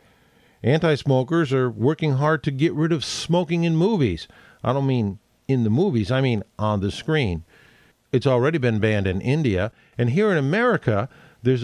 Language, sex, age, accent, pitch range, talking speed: English, male, 50-69, American, 110-155 Hz, 170 wpm